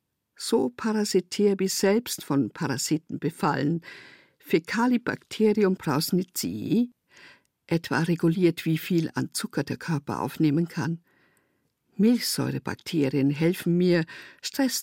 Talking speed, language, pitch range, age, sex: 95 wpm, German, 150-190 Hz, 50-69, female